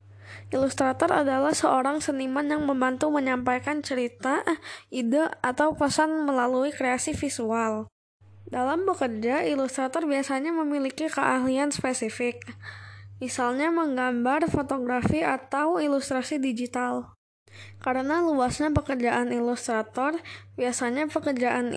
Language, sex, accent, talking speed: Indonesian, female, native, 90 wpm